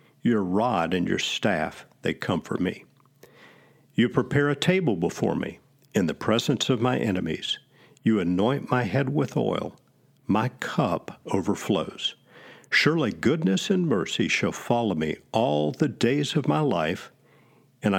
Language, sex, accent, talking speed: English, male, American, 145 wpm